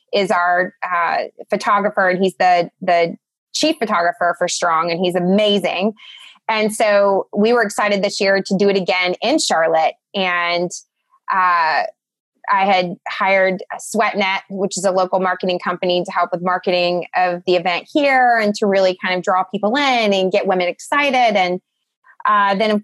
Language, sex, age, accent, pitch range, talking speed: English, female, 20-39, American, 185-230 Hz, 170 wpm